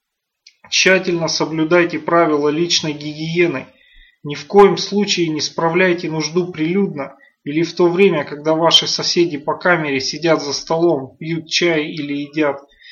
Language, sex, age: Russian, male, 30-49